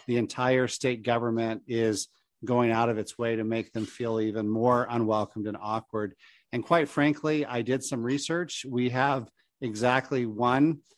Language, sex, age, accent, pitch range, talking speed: English, male, 50-69, American, 115-140 Hz, 165 wpm